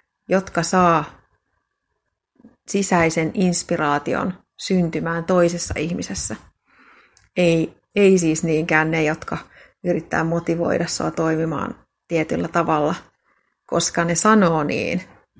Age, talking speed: 30-49, 90 wpm